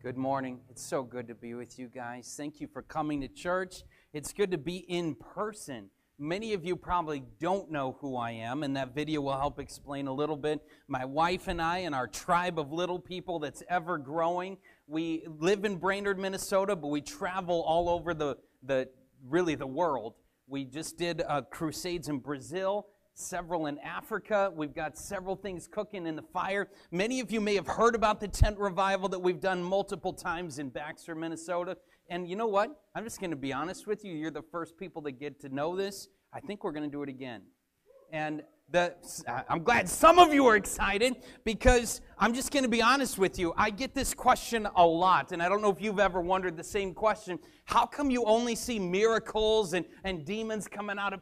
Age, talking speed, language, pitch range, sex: 30-49, 210 wpm, English, 160-210 Hz, male